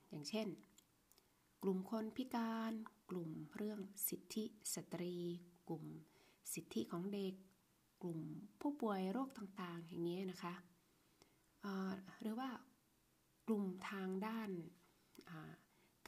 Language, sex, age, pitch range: Thai, female, 20-39, 160-195 Hz